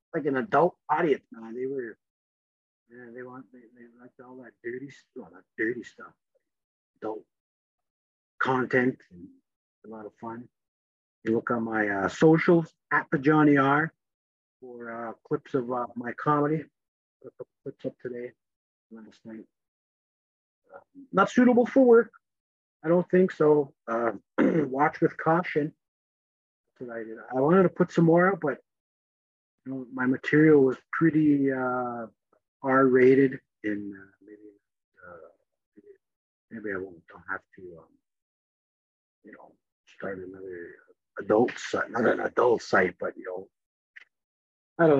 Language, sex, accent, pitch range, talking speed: English, male, American, 115-175 Hz, 145 wpm